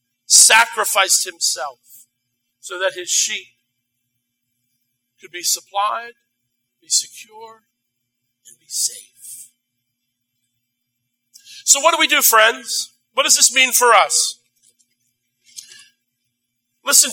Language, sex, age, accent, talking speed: English, male, 50-69, American, 95 wpm